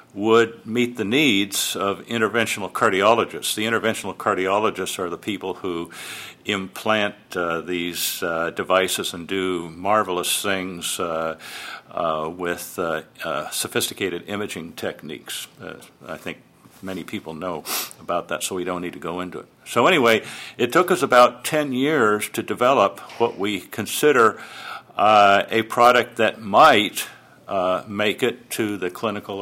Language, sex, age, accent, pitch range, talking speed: English, male, 60-79, American, 90-110 Hz, 145 wpm